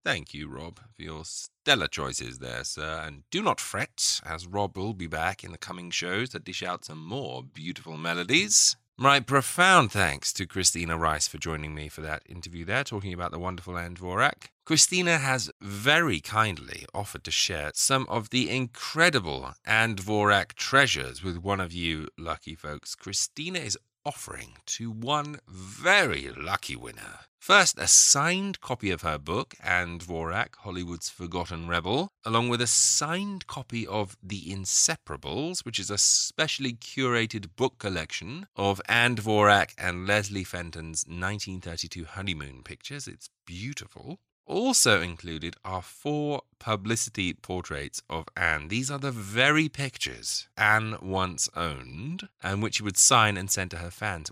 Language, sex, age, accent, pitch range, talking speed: English, male, 30-49, British, 85-120 Hz, 150 wpm